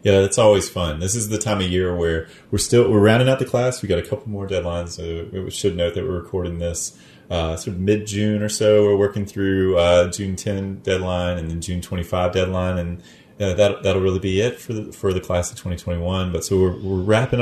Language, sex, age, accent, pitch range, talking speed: English, male, 30-49, American, 85-100 Hz, 240 wpm